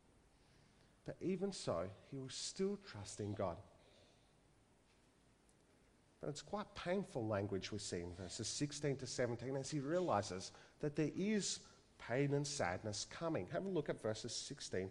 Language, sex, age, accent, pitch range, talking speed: English, male, 40-59, Australian, 115-165 Hz, 145 wpm